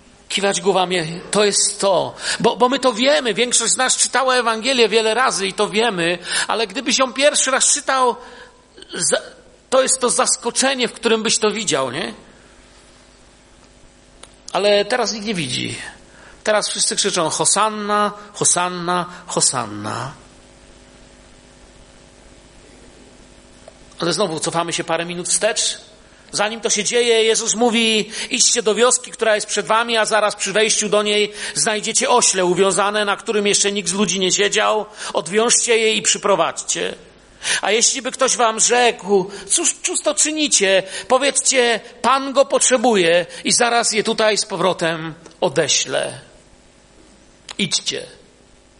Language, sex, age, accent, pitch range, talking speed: Polish, male, 50-69, native, 200-245 Hz, 135 wpm